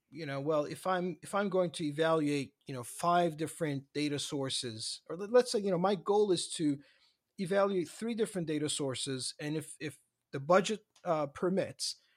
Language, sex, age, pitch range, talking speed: English, male, 40-59, 140-180 Hz, 185 wpm